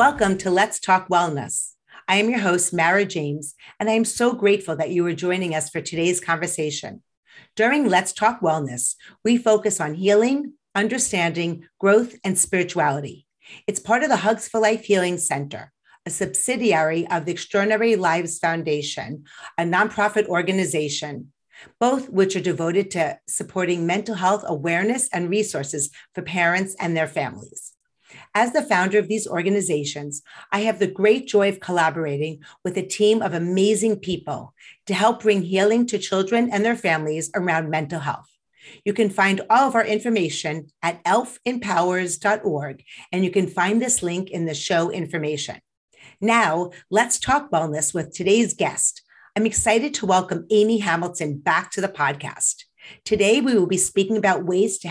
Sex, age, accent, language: female, 40-59, American, English